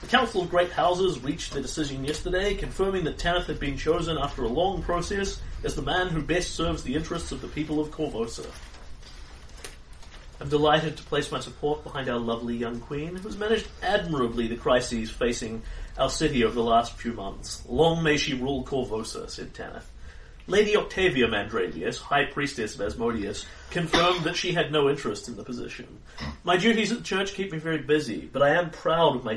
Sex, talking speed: male, 195 wpm